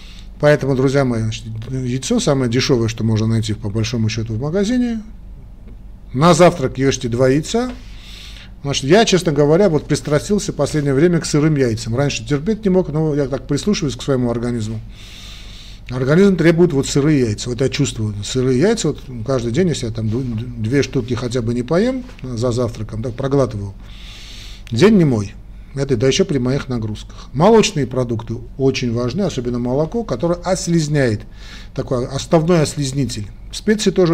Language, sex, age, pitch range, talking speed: Russian, male, 40-59, 110-150 Hz, 155 wpm